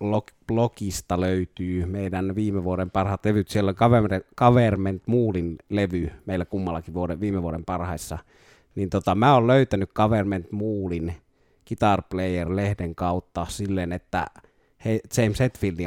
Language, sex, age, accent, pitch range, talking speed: Finnish, male, 30-49, native, 85-105 Hz, 125 wpm